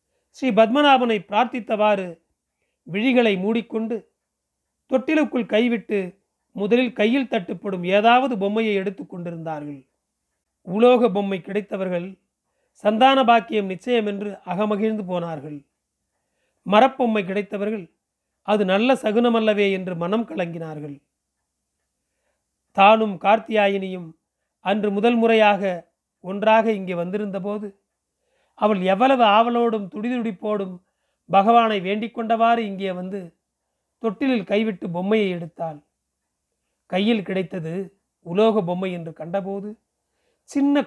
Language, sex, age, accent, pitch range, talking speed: Tamil, male, 40-59, native, 180-225 Hz, 85 wpm